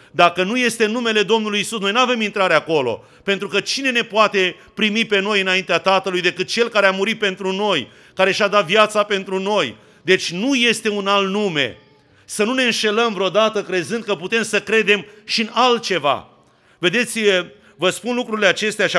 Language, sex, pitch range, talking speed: Romanian, male, 185-215 Hz, 185 wpm